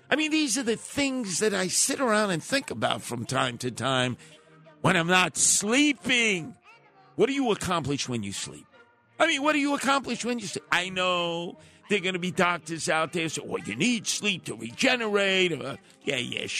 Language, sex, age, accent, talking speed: English, male, 50-69, American, 210 wpm